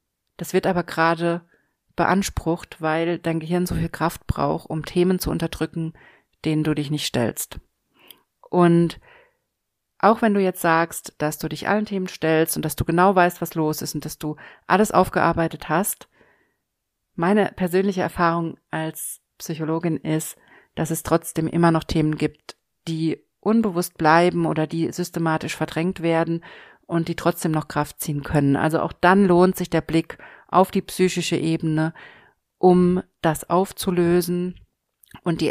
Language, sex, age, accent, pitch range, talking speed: German, female, 40-59, German, 155-180 Hz, 155 wpm